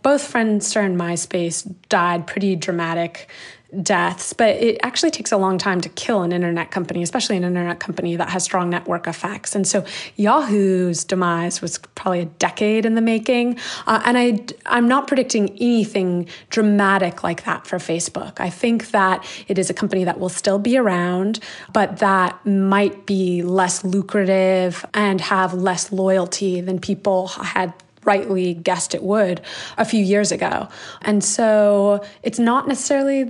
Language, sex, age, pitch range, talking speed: English, female, 20-39, 185-210 Hz, 160 wpm